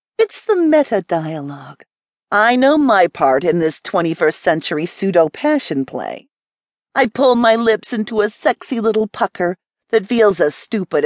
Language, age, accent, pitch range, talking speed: English, 40-59, American, 165-250 Hz, 135 wpm